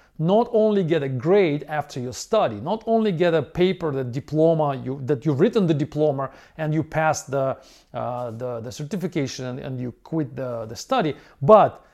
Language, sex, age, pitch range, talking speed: English, male, 40-59, 135-195 Hz, 185 wpm